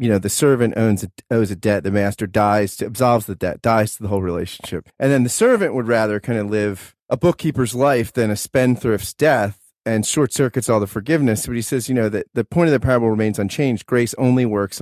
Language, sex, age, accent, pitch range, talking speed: English, male, 30-49, American, 105-135 Hz, 235 wpm